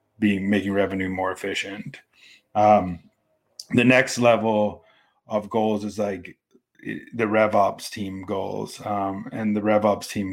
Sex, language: male, English